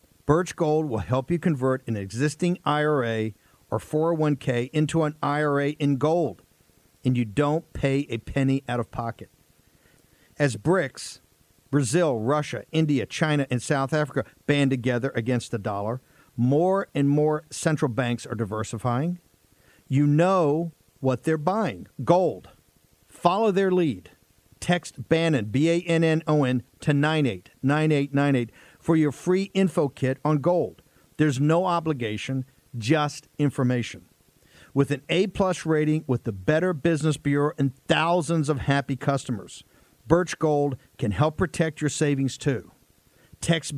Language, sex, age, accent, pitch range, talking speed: English, male, 50-69, American, 125-155 Hz, 130 wpm